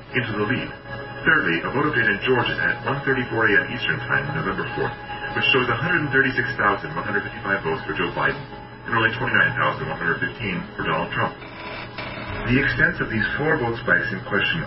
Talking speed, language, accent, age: 155 wpm, English, American, 40-59